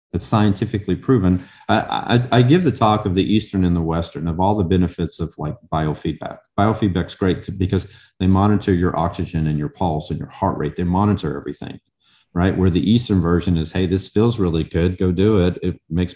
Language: English